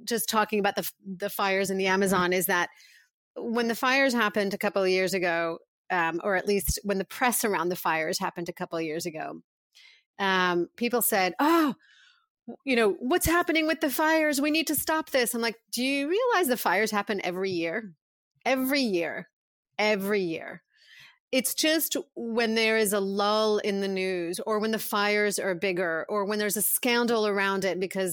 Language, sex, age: English, female, 30-49